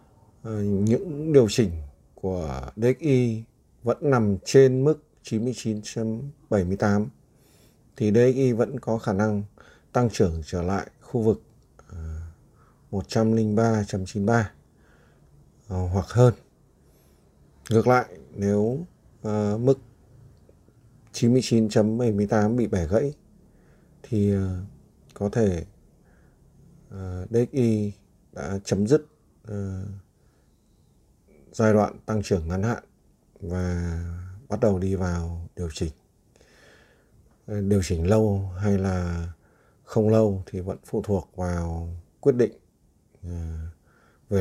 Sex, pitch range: male, 95-115 Hz